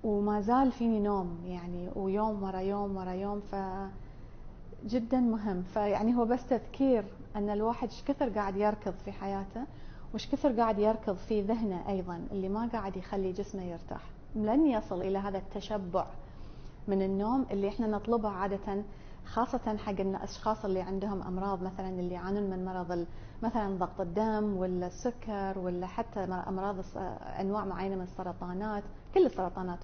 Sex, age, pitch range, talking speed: female, 30-49, 185-215 Hz, 150 wpm